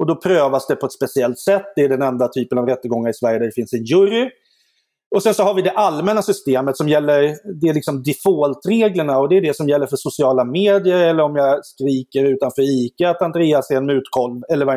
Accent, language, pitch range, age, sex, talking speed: native, Swedish, 135-185 Hz, 30-49, male, 240 wpm